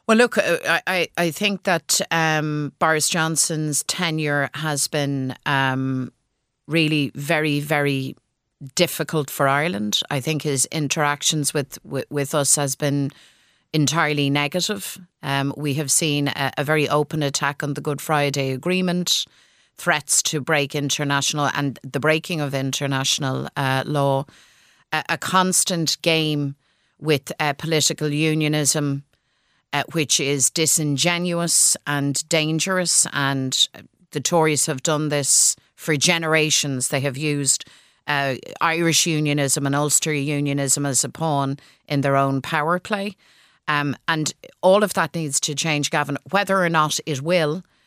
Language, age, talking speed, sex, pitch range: English, 30-49, 135 wpm, female, 140-165 Hz